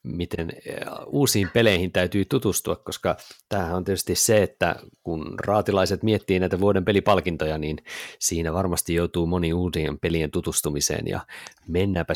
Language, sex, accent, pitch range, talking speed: Finnish, male, native, 80-105 Hz, 135 wpm